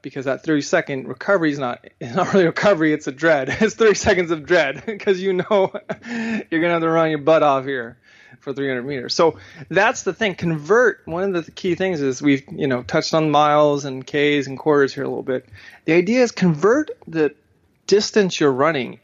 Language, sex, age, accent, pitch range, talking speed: English, male, 20-39, American, 140-180 Hz, 215 wpm